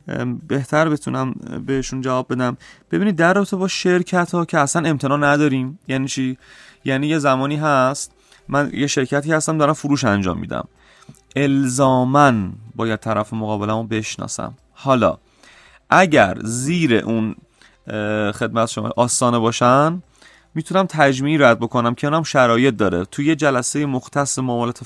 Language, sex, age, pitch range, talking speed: Persian, male, 30-49, 120-145 Hz, 130 wpm